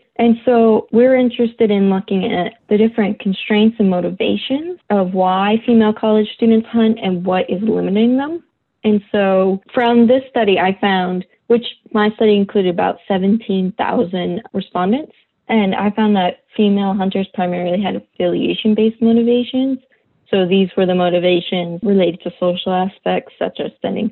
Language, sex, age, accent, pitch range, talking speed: English, female, 20-39, American, 185-225 Hz, 145 wpm